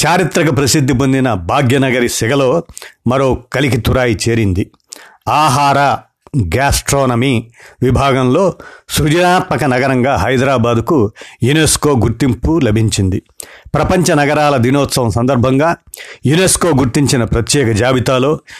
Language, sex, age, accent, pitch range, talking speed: Telugu, male, 50-69, native, 120-145 Hz, 85 wpm